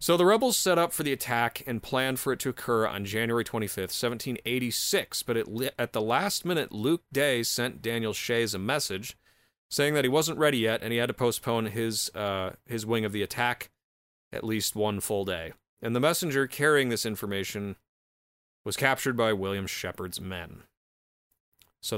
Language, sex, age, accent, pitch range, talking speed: English, male, 30-49, American, 105-130 Hz, 185 wpm